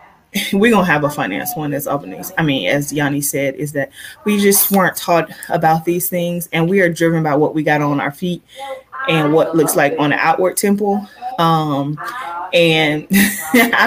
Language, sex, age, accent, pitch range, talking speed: English, female, 20-39, American, 155-200 Hz, 195 wpm